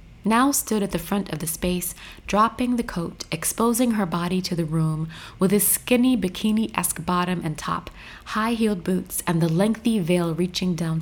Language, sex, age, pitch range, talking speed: English, female, 30-49, 165-205 Hz, 175 wpm